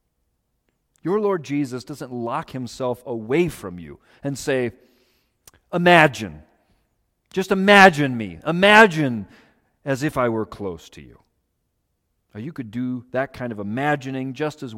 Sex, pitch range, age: male, 115-160 Hz, 40-59